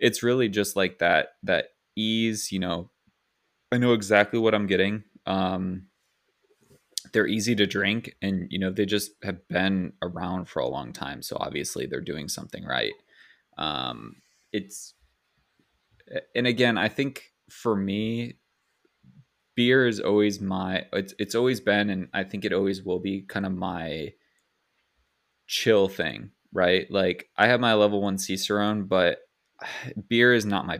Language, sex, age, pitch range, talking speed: English, male, 20-39, 95-110 Hz, 155 wpm